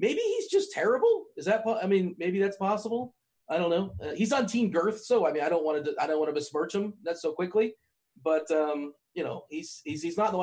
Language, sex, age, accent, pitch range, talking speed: English, male, 30-49, American, 135-165 Hz, 270 wpm